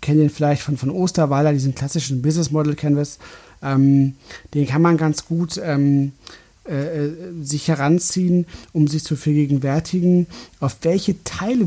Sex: male